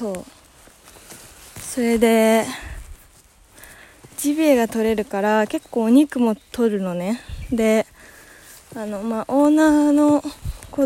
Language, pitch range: Japanese, 185-275 Hz